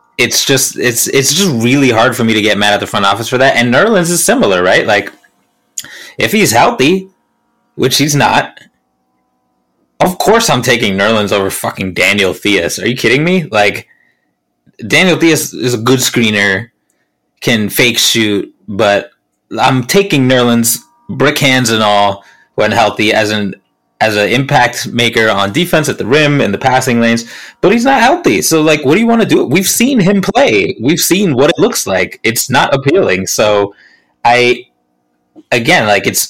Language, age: English, 20-39